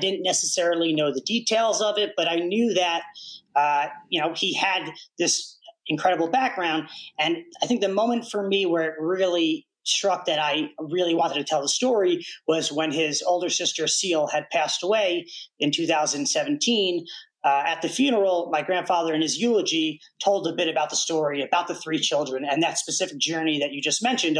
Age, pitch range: 30-49, 160-210 Hz